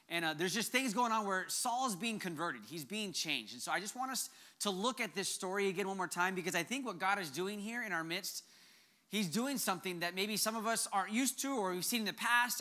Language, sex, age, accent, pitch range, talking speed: English, male, 30-49, American, 180-230 Hz, 270 wpm